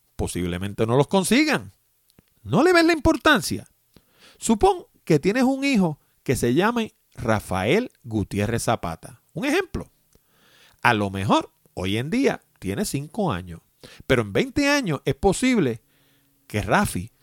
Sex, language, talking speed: male, Spanish, 135 wpm